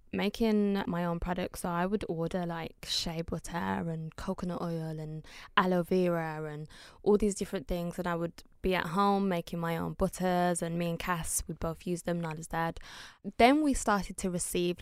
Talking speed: 195 wpm